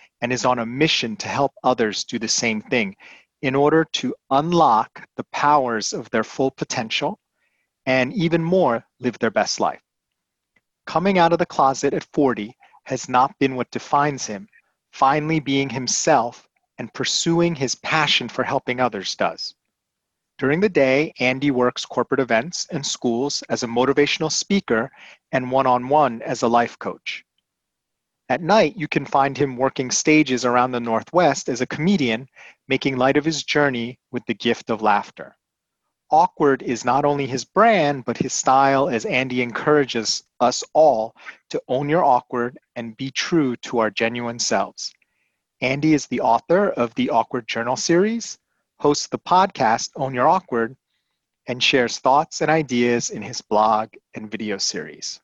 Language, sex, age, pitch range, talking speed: English, male, 30-49, 120-150 Hz, 160 wpm